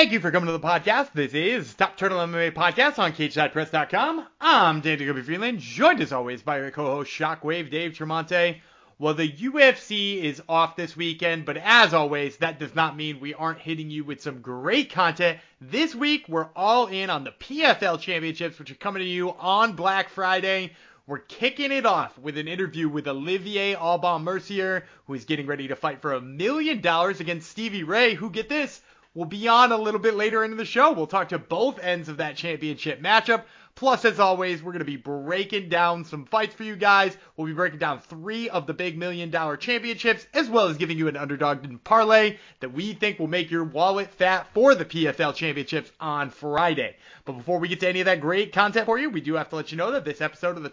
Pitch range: 155-210 Hz